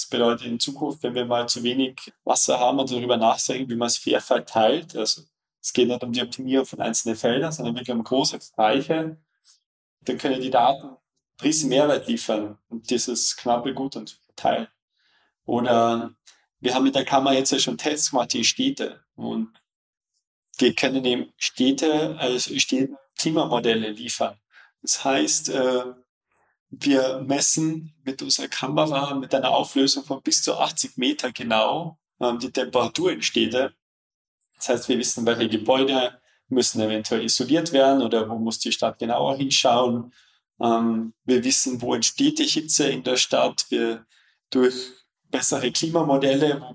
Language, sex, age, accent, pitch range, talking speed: German, male, 20-39, German, 120-140 Hz, 155 wpm